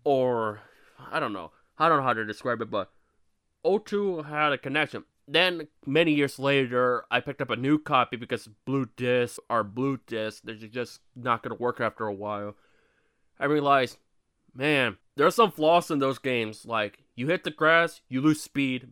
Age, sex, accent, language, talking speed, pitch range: 20-39, male, American, English, 185 wpm, 120-150 Hz